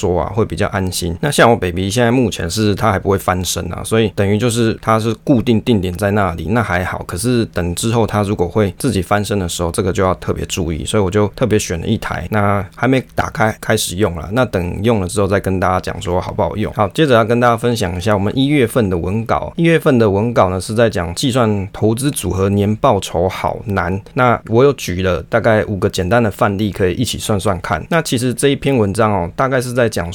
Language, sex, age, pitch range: Chinese, male, 20-39, 95-115 Hz